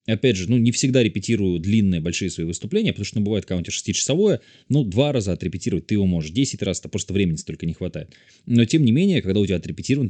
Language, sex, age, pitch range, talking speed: Russian, male, 20-39, 95-130 Hz, 230 wpm